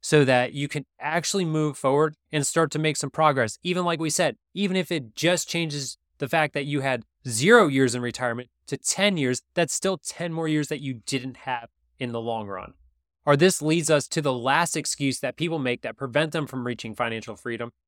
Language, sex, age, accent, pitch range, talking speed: English, male, 20-39, American, 130-165 Hz, 220 wpm